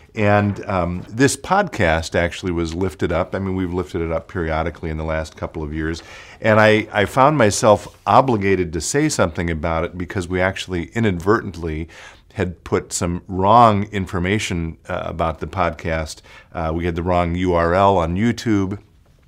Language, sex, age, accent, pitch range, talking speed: English, male, 50-69, American, 85-110 Hz, 165 wpm